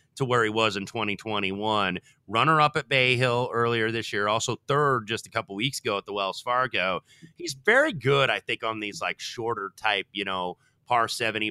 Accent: American